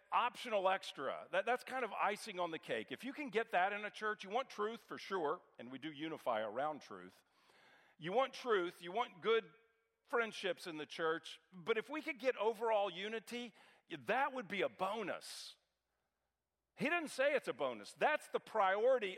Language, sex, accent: English, male, American